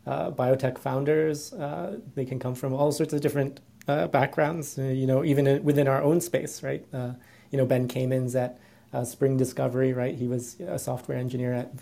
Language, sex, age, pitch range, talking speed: English, male, 30-49, 120-140 Hz, 200 wpm